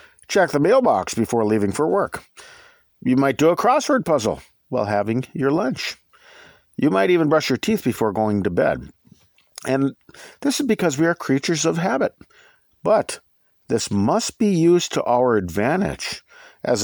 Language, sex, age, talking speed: English, male, 50-69, 160 wpm